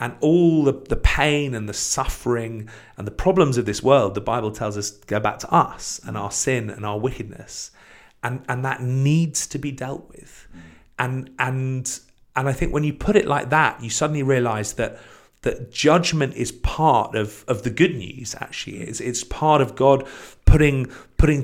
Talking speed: 190 wpm